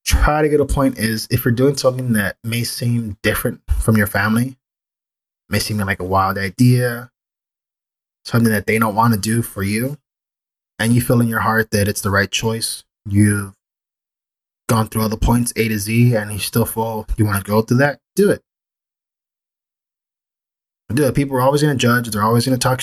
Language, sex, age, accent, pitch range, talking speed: English, male, 20-39, American, 105-125 Hz, 200 wpm